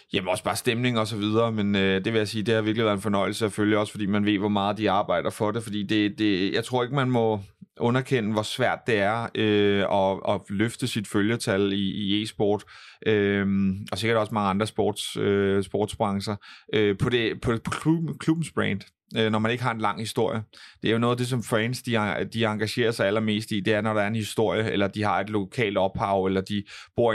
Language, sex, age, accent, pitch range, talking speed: Danish, male, 30-49, native, 100-110 Hz, 225 wpm